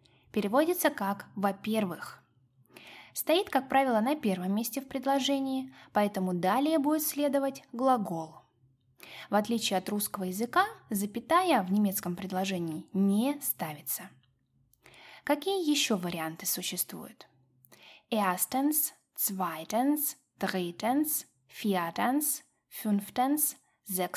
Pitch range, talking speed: 185-275 Hz, 75 wpm